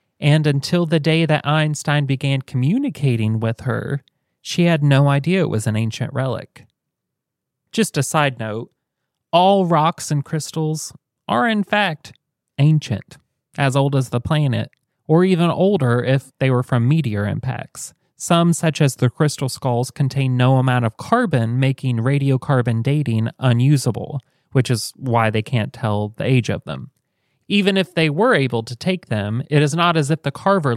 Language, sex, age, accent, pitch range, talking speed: English, male, 30-49, American, 120-155 Hz, 165 wpm